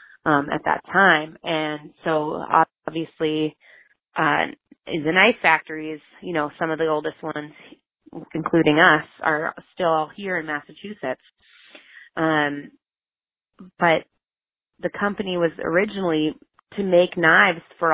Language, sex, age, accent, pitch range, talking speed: English, female, 20-39, American, 155-185 Hz, 120 wpm